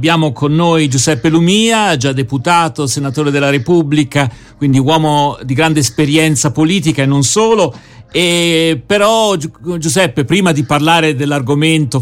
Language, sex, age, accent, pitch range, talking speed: Italian, male, 50-69, native, 135-165 Hz, 130 wpm